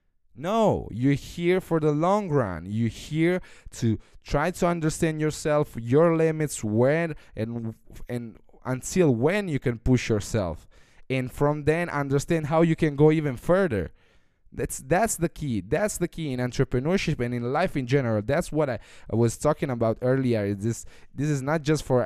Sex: male